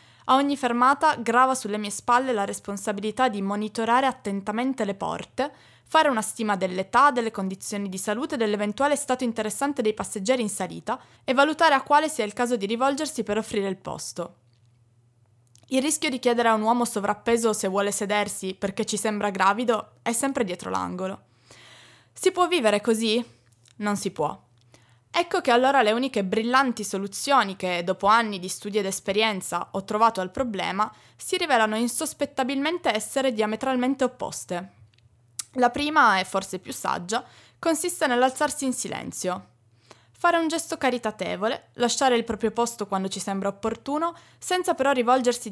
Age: 20-39